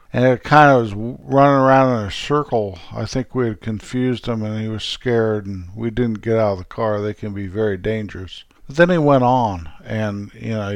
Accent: American